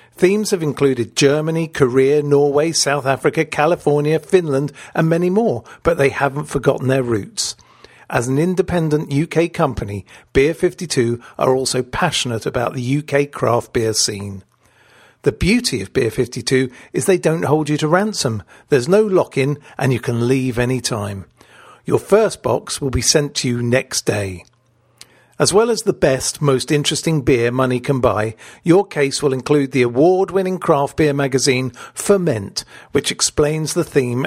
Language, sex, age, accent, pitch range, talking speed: English, male, 50-69, British, 125-170 Hz, 160 wpm